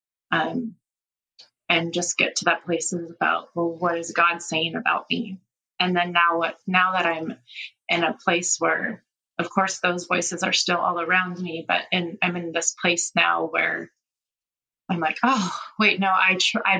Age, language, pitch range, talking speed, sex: 20-39, English, 170-210 Hz, 175 wpm, female